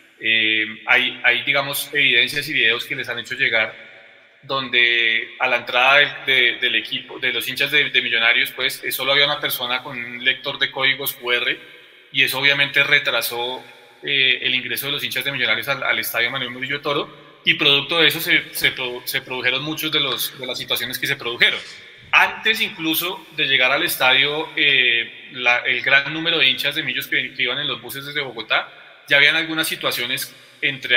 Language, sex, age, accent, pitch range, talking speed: Spanish, male, 20-39, Colombian, 125-155 Hz, 195 wpm